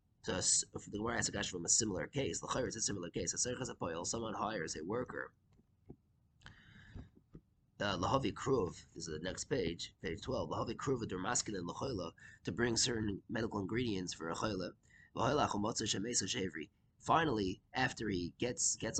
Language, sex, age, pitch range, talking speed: English, male, 20-39, 95-115 Hz, 115 wpm